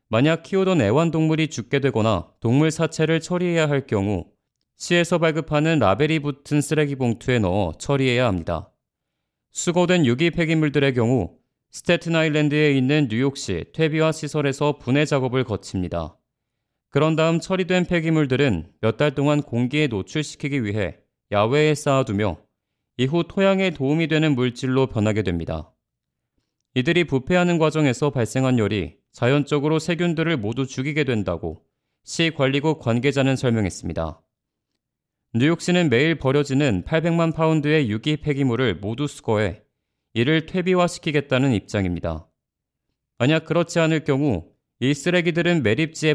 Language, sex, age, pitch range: Korean, male, 30-49, 110-160 Hz